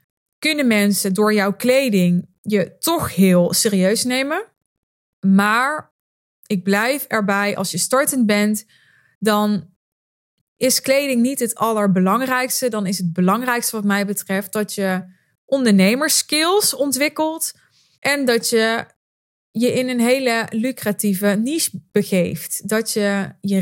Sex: female